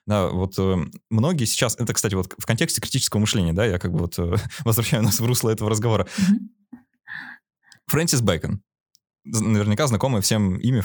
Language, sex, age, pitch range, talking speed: Russian, male, 20-39, 95-125 Hz, 165 wpm